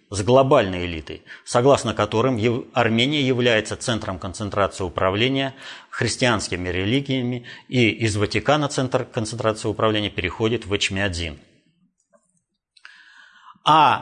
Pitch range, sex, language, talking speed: 105-165 Hz, male, Russian, 95 wpm